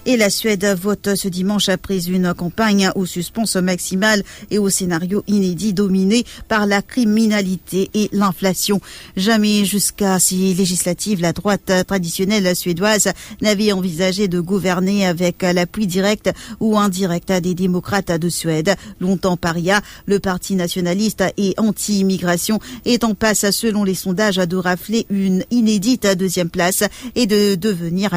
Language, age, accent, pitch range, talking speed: English, 50-69, French, 180-210 Hz, 140 wpm